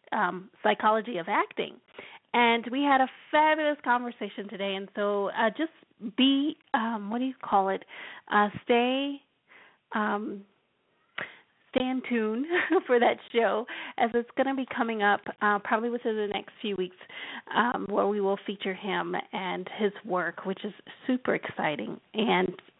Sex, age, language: female, 30-49, English